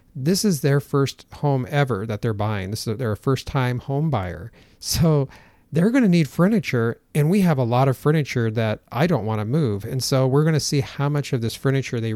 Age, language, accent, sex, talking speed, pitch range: 40-59, English, American, male, 230 wpm, 110-140 Hz